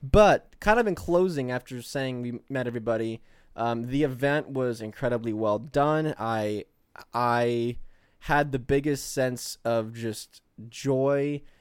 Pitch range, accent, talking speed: 115-140 Hz, American, 135 wpm